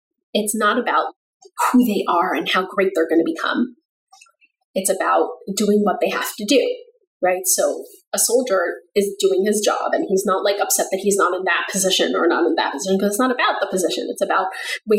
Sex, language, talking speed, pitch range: female, English, 215 wpm, 195-295 Hz